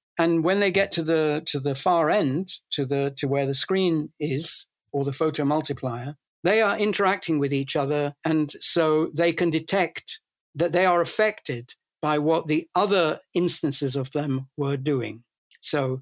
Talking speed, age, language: 170 wpm, 60-79, English